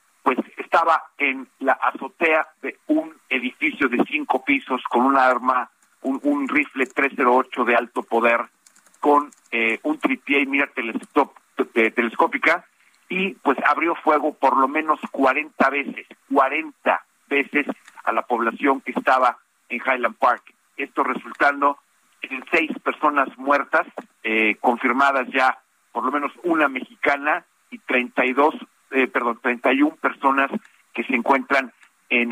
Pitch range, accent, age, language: 125-165 Hz, Mexican, 50-69, Spanish